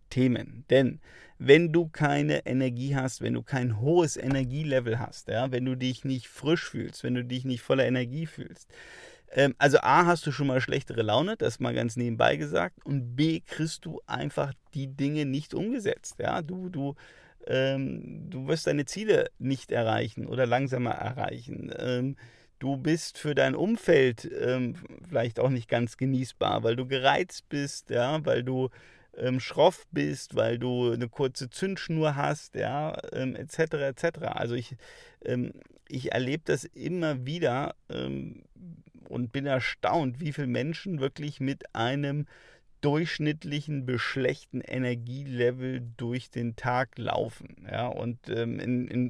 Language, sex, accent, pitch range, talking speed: German, male, German, 125-150 Hz, 155 wpm